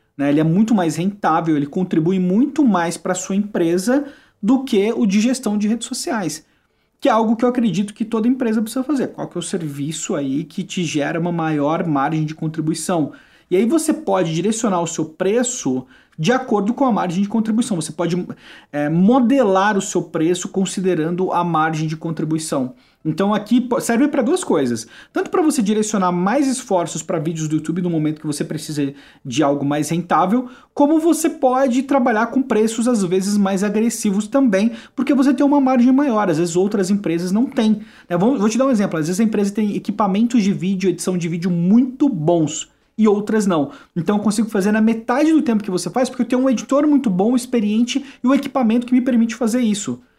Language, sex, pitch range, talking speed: Portuguese, male, 175-245 Hz, 200 wpm